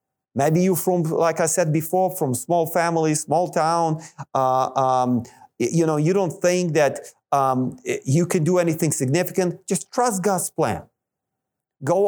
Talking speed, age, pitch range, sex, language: 155 wpm, 40-59, 130-170 Hz, male, English